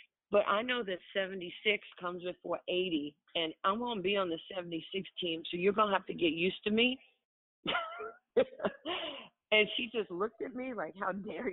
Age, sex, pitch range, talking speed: 40-59, female, 160-195 Hz, 185 wpm